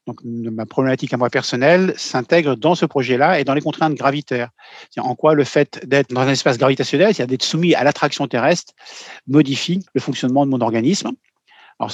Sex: male